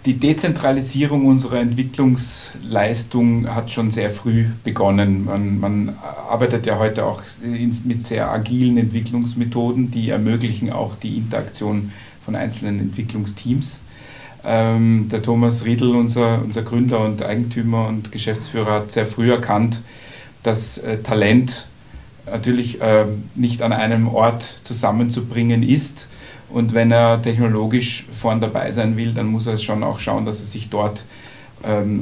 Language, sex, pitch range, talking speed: German, male, 110-125 Hz, 130 wpm